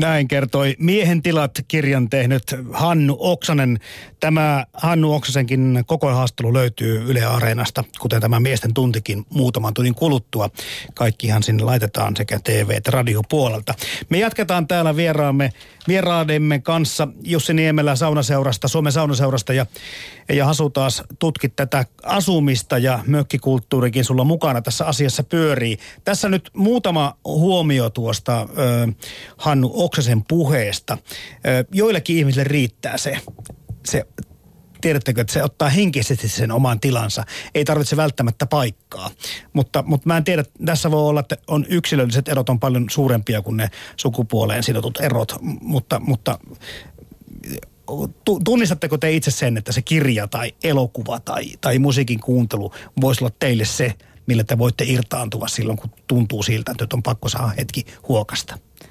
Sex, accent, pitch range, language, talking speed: male, native, 120-150 Hz, Finnish, 140 wpm